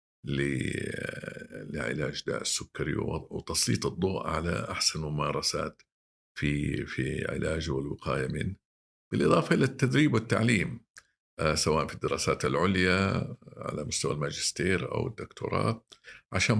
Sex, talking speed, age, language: male, 95 wpm, 50-69, Arabic